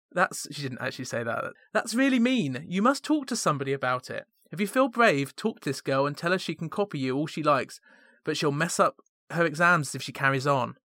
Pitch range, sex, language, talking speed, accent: 130-175 Hz, male, English, 240 wpm, British